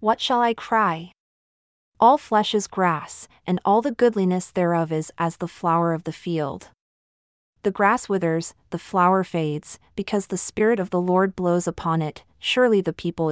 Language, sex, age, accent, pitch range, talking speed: English, female, 30-49, American, 170-215 Hz, 170 wpm